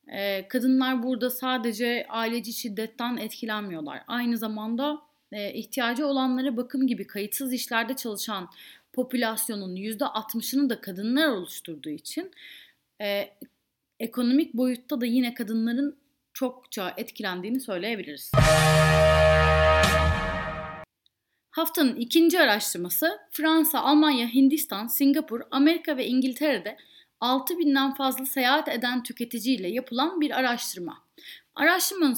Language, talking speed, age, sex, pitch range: Turkish, 90 wpm, 30-49, female, 210-290 Hz